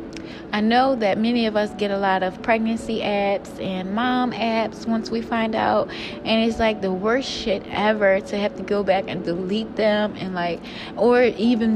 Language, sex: English, female